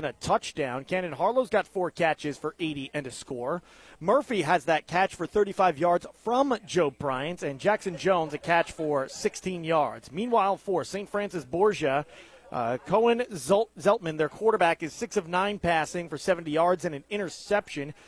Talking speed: 170 wpm